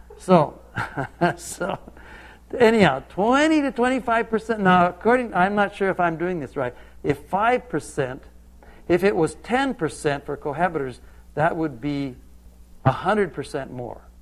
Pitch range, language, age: 120-180 Hz, Chinese, 60-79